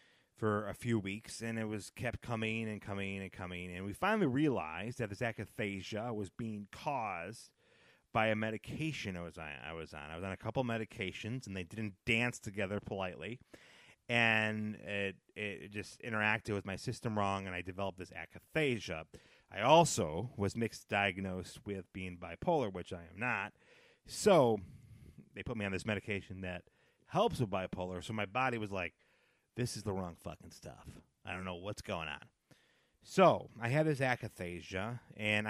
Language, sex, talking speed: English, male, 170 wpm